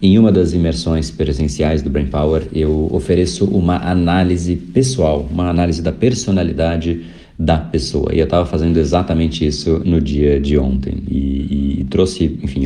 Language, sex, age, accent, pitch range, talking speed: Portuguese, male, 50-69, Brazilian, 75-95 Hz, 155 wpm